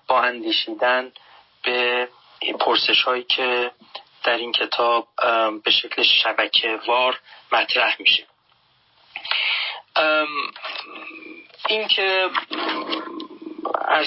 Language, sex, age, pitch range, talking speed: Persian, male, 30-49, 125-150 Hz, 75 wpm